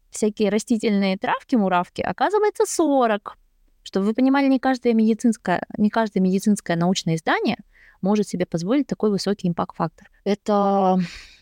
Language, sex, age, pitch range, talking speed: Russian, female, 20-39, 165-215 Hz, 125 wpm